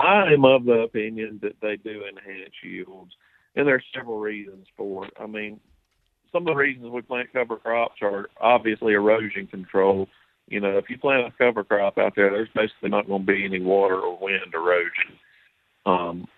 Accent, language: American, English